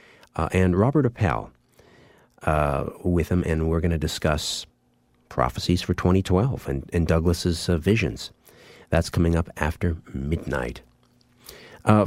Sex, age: male, 50-69